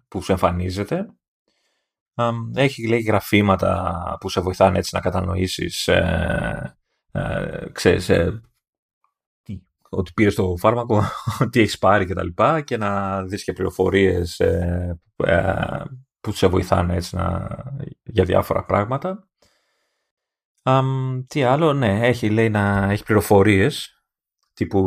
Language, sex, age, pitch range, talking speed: Greek, male, 30-49, 90-120 Hz, 130 wpm